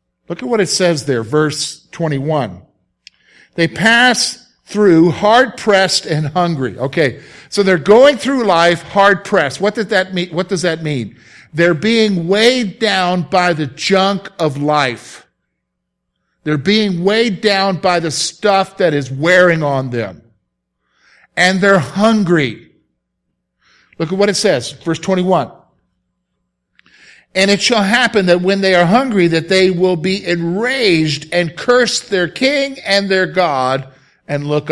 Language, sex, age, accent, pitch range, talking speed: English, male, 50-69, American, 155-205 Hz, 145 wpm